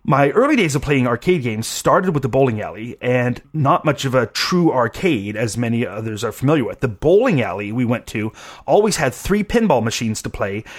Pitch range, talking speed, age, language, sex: 120-165 Hz, 210 wpm, 30-49, English, male